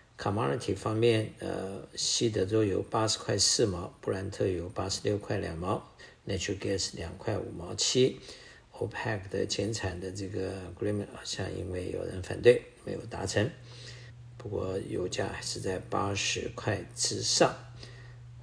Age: 50-69